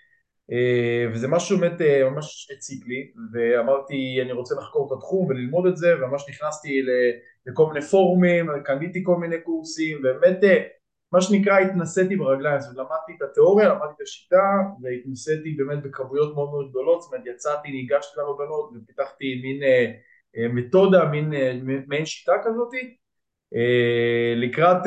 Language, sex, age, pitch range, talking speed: Hebrew, male, 20-39, 130-175 Hz, 135 wpm